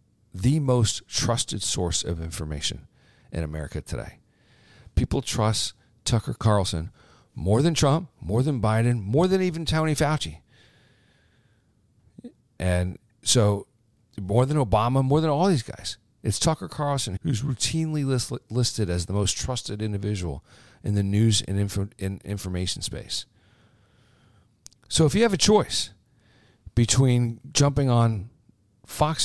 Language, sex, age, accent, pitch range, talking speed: English, male, 40-59, American, 100-130 Hz, 125 wpm